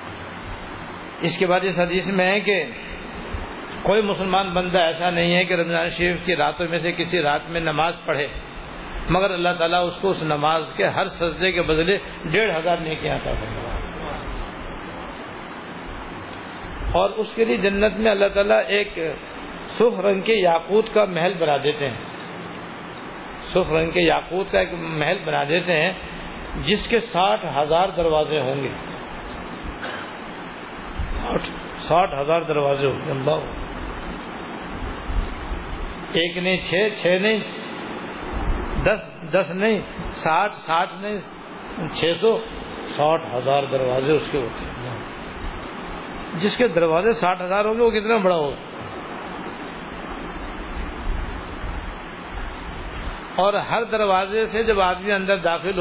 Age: 60-79